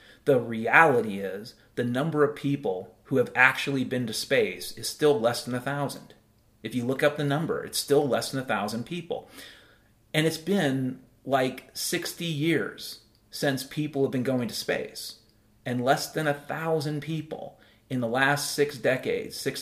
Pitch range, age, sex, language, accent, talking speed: 125-150 Hz, 30-49, male, English, American, 165 wpm